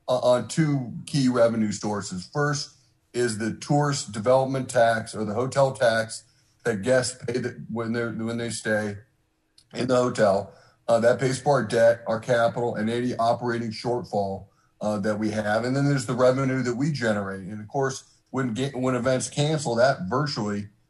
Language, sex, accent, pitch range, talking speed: English, male, American, 110-135 Hz, 175 wpm